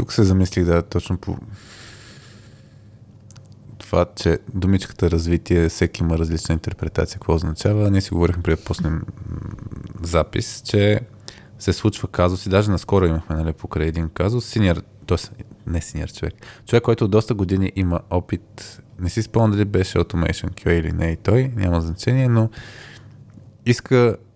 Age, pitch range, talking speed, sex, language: 20-39, 90-115 Hz, 150 wpm, male, Bulgarian